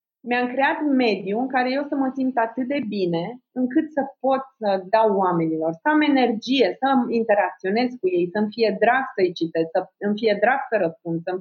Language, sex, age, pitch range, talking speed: Romanian, female, 30-49, 180-270 Hz, 195 wpm